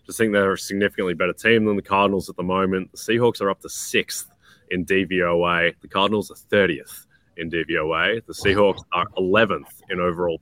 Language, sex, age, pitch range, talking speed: English, male, 20-39, 90-100 Hz, 195 wpm